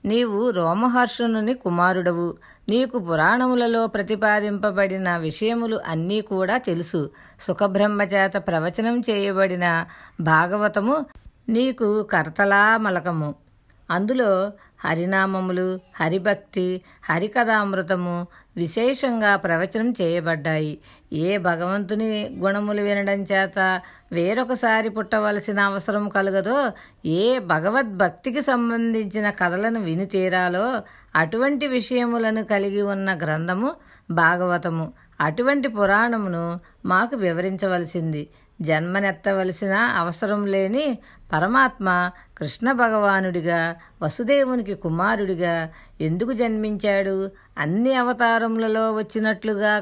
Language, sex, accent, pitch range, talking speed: Telugu, female, native, 180-225 Hz, 75 wpm